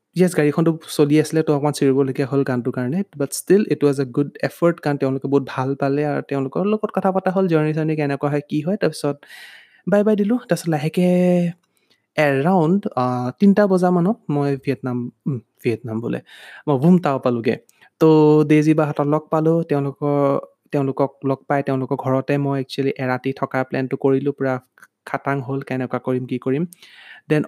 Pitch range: 135-160 Hz